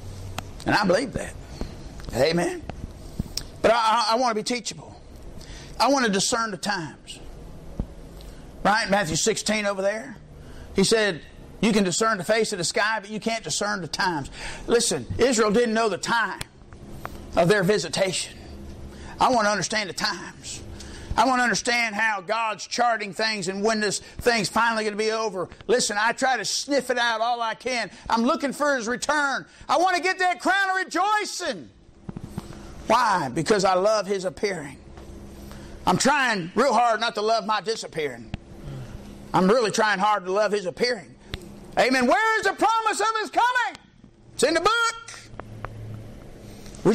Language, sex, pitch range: English, male, 190-250 Hz